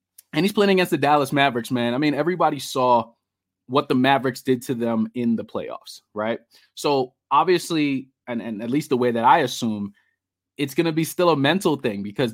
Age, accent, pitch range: 20-39, American, 115-150 Hz